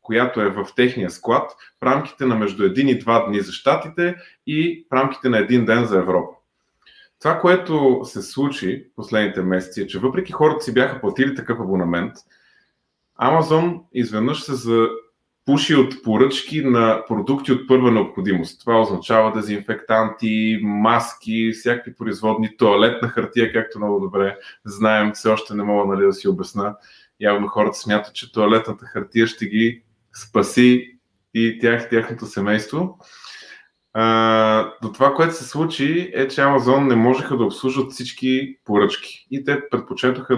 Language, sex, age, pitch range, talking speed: Bulgarian, male, 20-39, 110-135 Hz, 150 wpm